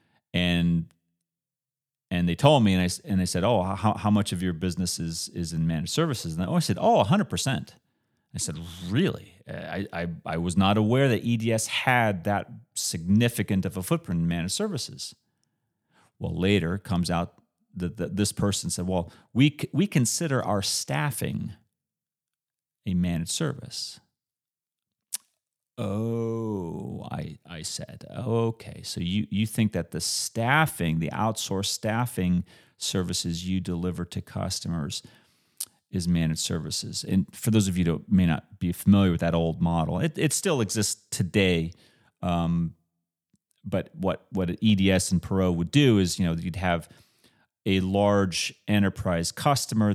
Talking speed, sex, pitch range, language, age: 155 wpm, male, 85-115 Hz, English, 30-49